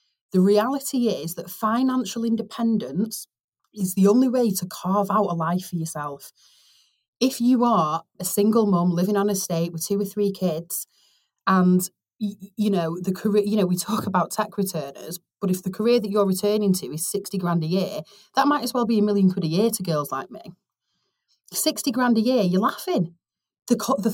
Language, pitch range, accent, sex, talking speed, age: English, 185-230 Hz, British, female, 195 wpm, 30-49